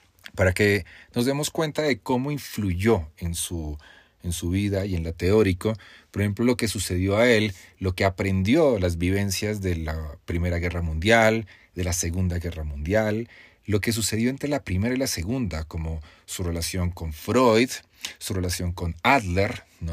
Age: 40-59